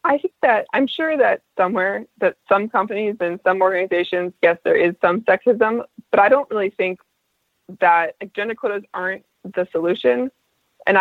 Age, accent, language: 20-39, American, English